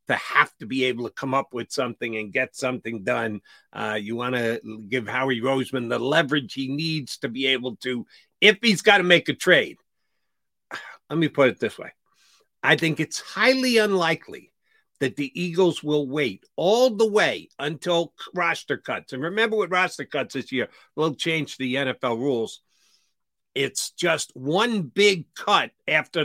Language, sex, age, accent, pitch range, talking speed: English, male, 50-69, American, 120-170 Hz, 175 wpm